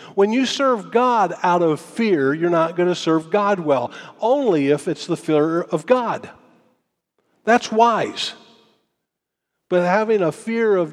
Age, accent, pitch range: 50-69, American, 150-205 Hz